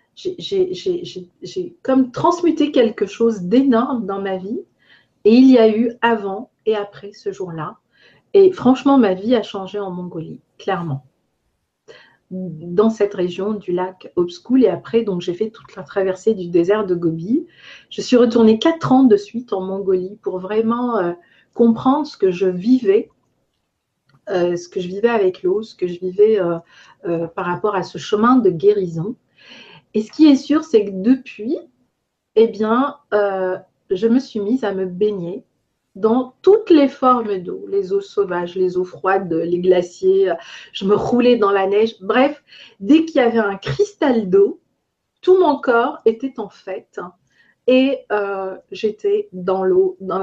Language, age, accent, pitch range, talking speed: French, 50-69, French, 190-260 Hz, 170 wpm